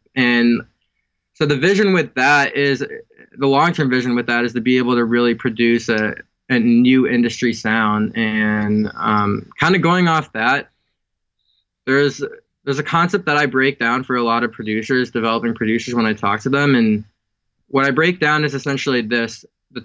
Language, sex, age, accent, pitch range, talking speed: English, male, 20-39, American, 115-140 Hz, 180 wpm